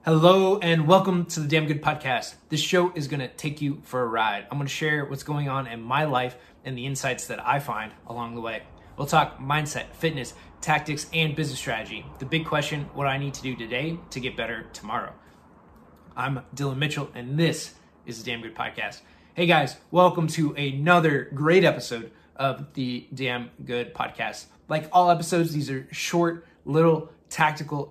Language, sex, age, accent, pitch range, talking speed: English, male, 20-39, American, 120-155 Hz, 190 wpm